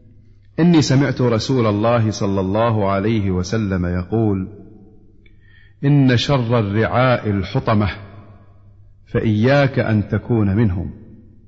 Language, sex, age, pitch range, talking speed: Arabic, male, 40-59, 100-120 Hz, 90 wpm